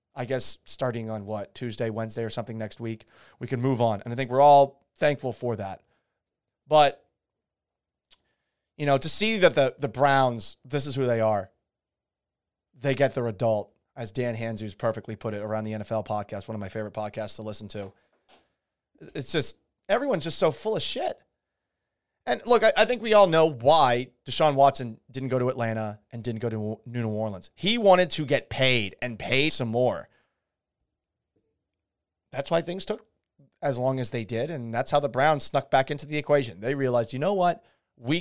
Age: 30-49